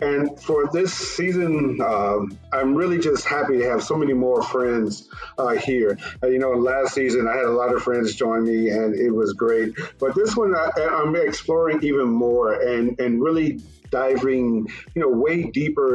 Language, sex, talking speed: English, male, 185 wpm